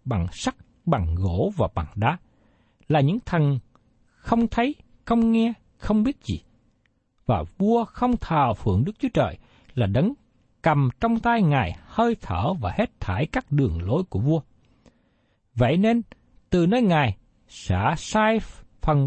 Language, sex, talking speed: Vietnamese, male, 155 wpm